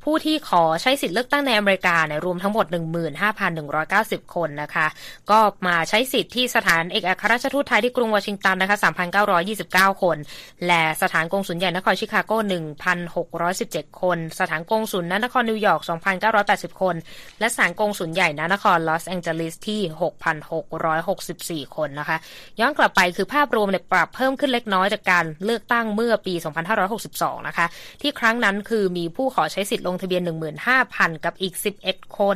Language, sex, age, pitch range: Thai, female, 20-39, 170-220 Hz